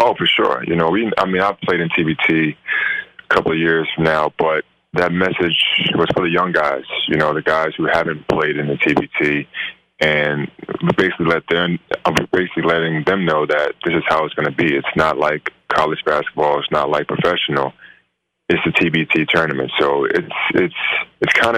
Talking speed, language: 195 wpm, English